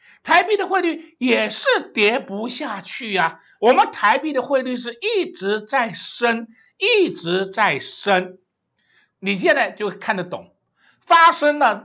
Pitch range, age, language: 185-285 Hz, 60-79, Chinese